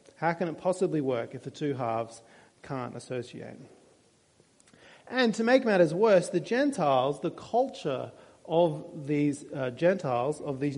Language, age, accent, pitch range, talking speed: English, 30-49, Australian, 140-185 Hz, 145 wpm